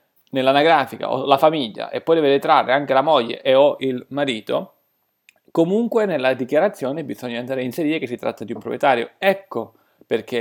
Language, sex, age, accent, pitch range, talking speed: Italian, male, 30-49, native, 135-200 Hz, 175 wpm